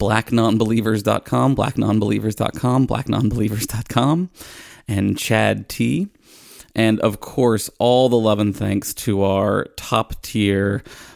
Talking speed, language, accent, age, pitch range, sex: 95 wpm, English, American, 20-39, 100-115 Hz, male